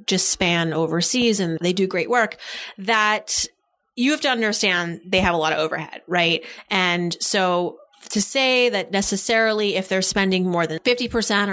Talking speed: 165 wpm